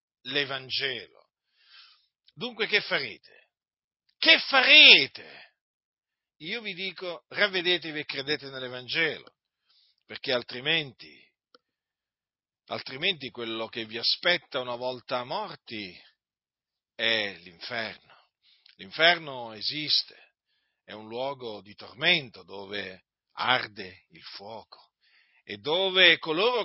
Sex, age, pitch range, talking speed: male, 50-69, 120-175 Hz, 90 wpm